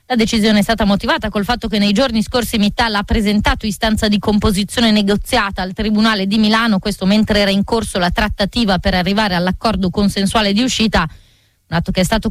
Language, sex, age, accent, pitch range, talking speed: Italian, female, 30-49, native, 195-230 Hz, 195 wpm